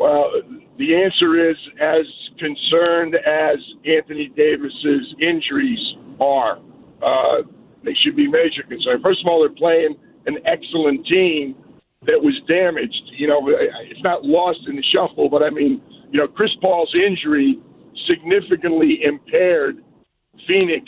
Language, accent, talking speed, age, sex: English, American, 140 wpm, 50-69, male